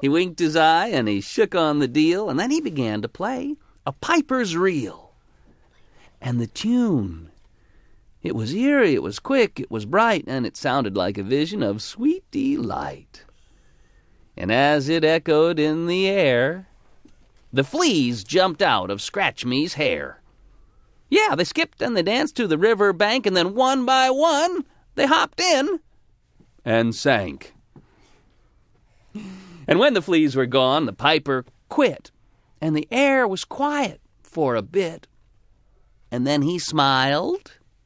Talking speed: 150 wpm